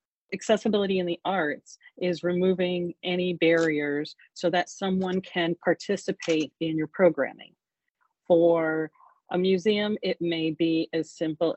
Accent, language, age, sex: American, English, 40-59, female